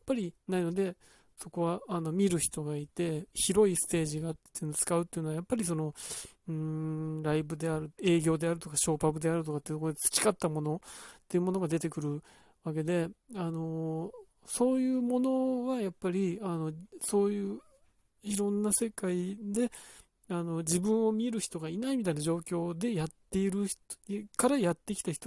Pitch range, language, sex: 155-205 Hz, Japanese, male